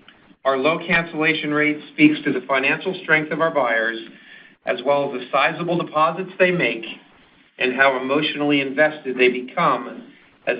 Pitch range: 135-170 Hz